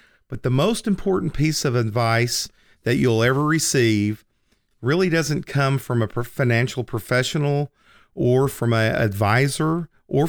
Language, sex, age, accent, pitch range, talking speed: English, male, 40-59, American, 105-140 Hz, 135 wpm